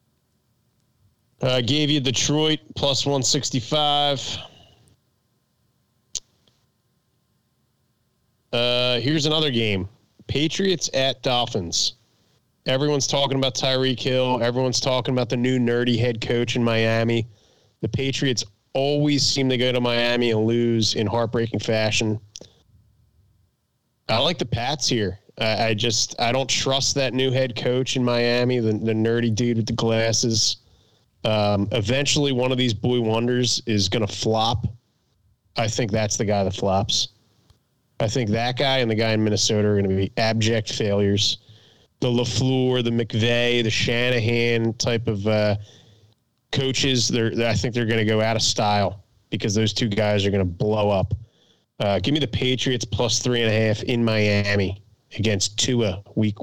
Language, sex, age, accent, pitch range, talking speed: English, male, 20-39, American, 110-130 Hz, 150 wpm